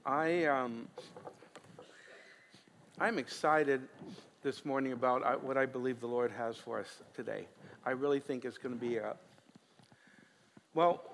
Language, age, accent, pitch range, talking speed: English, 60-79, American, 135-180 Hz, 135 wpm